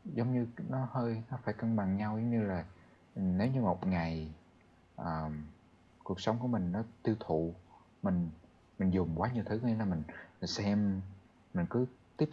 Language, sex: Vietnamese, male